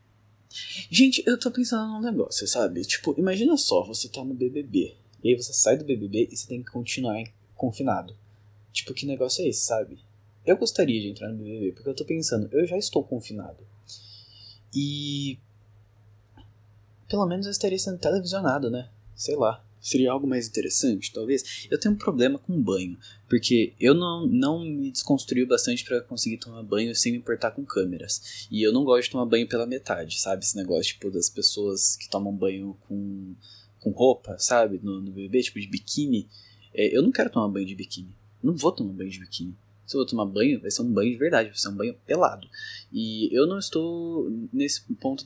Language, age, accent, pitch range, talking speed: Portuguese, 10-29, Brazilian, 105-145 Hz, 195 wpm